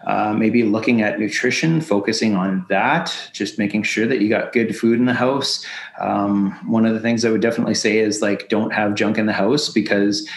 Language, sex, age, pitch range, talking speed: English, male, 30-49, 110-120 Hz, 215 wpm